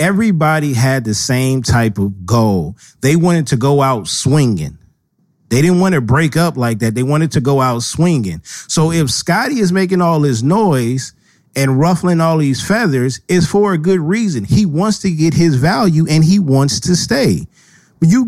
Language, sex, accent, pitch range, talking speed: English, male, American, 130-175 Hz, 185 wpm